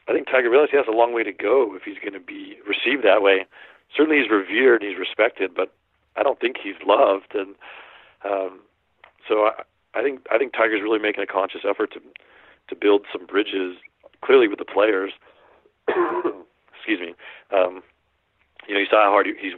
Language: English